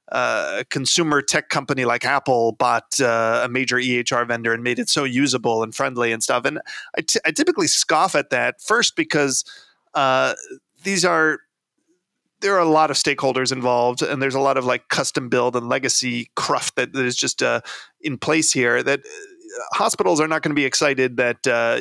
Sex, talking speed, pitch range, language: male, 195 wpm, 125-195 Hz, English